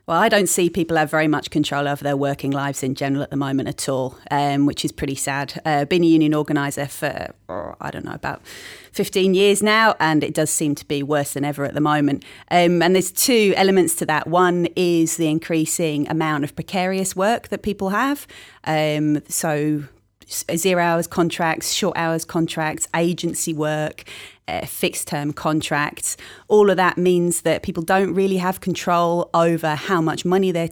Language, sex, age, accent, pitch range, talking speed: English, female, 30-49, British, 150-185 Hz, 190 wpm